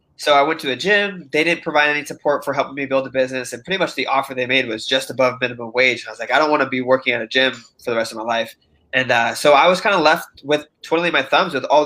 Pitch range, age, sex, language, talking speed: 125-155 Hz, 20-39, male, English, 310 wpm